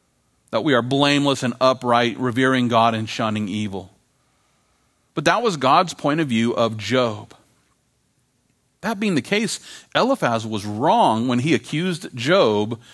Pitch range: 105-145 Hz